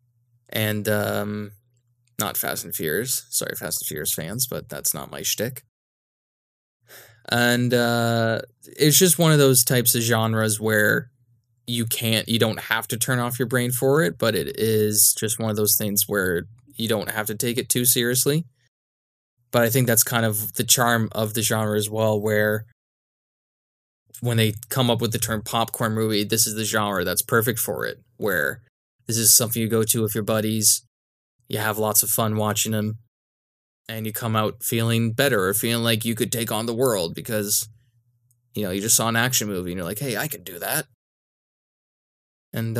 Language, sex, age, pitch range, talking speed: English, male, 20-39, 105-120 Hz, 190 wpm